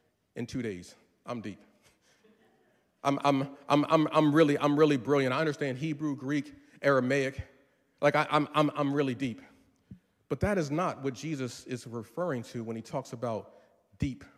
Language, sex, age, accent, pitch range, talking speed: English, male, 40-59, American, 130-165 Hz, 165 wpm